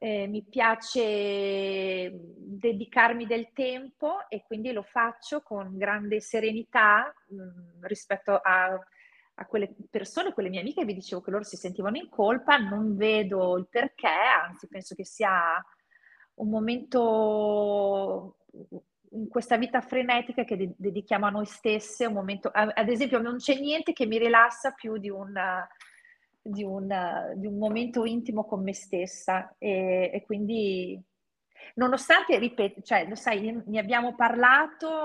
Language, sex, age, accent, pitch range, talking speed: Italian, female, 40-59, native, 195-235 Hz, 145 wpm